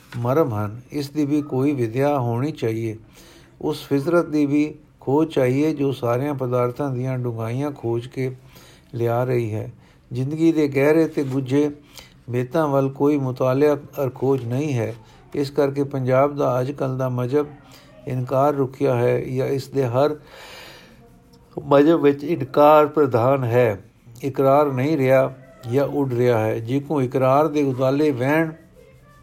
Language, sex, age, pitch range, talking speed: Punjabi, male, 60-79, 125-145 Hz, 140 wpm